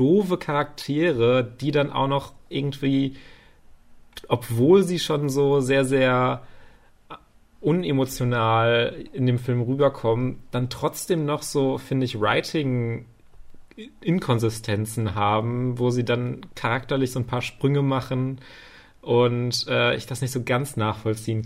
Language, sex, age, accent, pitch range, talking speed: German, male, 30-49, German, 115-135 Hz, 120 wpm